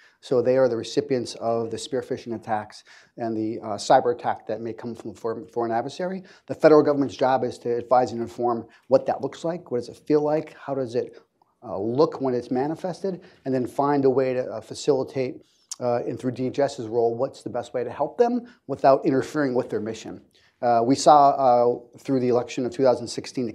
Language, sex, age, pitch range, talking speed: English, male, 30-49, 120-140 Hz, 210 wpm